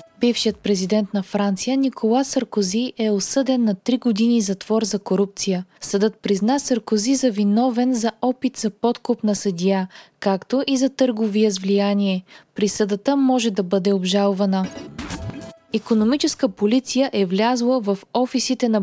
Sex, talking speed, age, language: female, 135 wpm, 20-39, Bulgarian